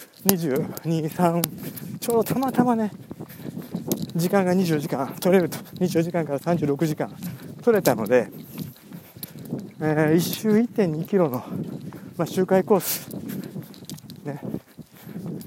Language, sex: Japanese, male